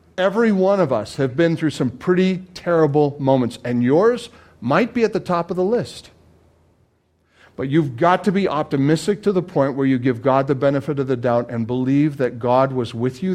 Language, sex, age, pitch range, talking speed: English, male, 50-69, 120-170 Hz, 205 wpm